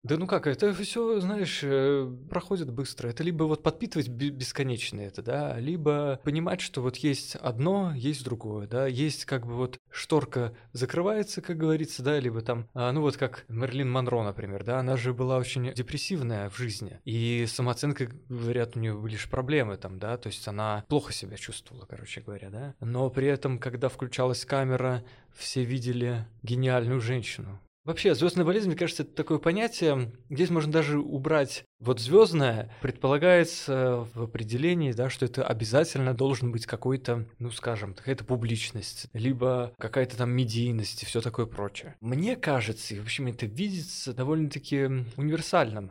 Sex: male